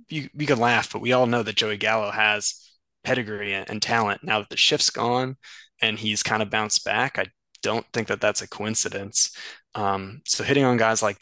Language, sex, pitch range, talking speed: English, male, 100-120 Hz, 210 wpm